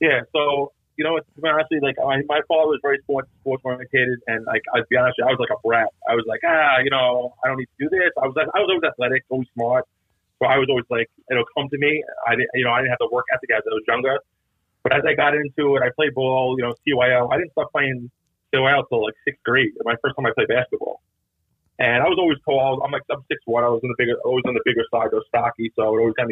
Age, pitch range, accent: 30-49, 120-150 Hz, American